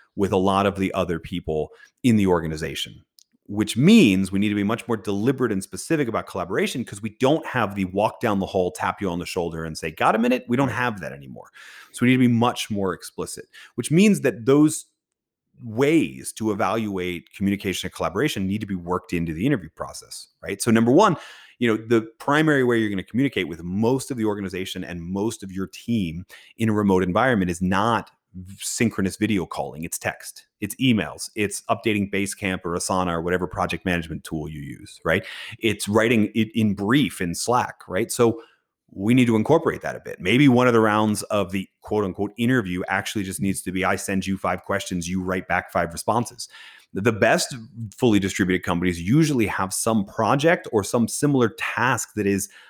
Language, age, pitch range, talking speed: English, 30-49, 95-115 Hz, 205 wpm